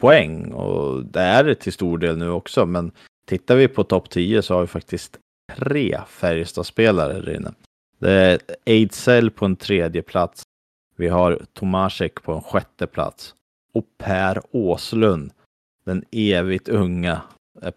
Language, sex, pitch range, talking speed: Swedish, male, 85-105 Hz, 150 wpm